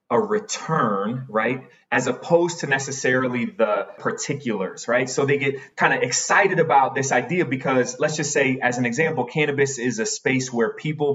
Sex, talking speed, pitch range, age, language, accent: male, 170 wpm, 120-160 Hz, 30-49, English, American